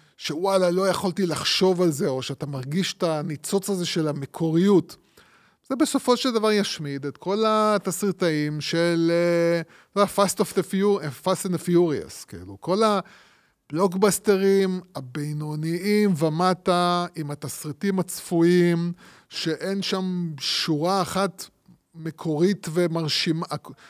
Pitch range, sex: 150-190 Hz, male